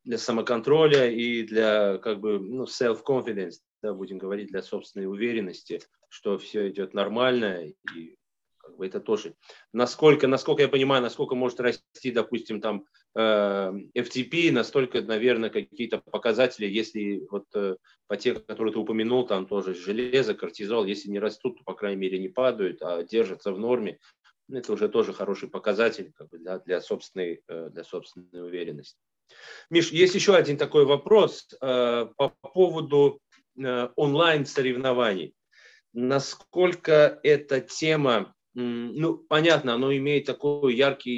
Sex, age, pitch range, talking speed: male, 30-49, 110-145 Hz, 140 wpm